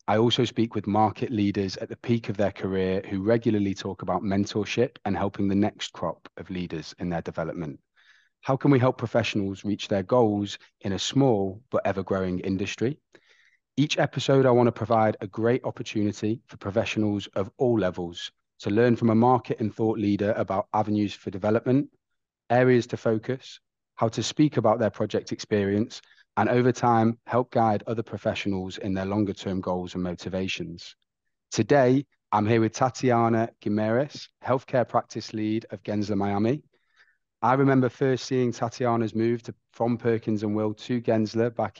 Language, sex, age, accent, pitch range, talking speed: English, male, 30-49, British, 100-120 Hz, 165 wpm